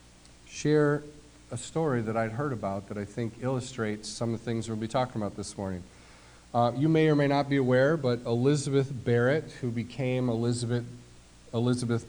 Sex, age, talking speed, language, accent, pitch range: male, 40-59, 180 wpm, English, American, 115-150 Hz